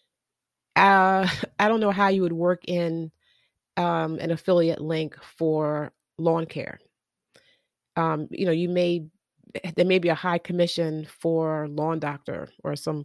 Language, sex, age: English, female, 30-49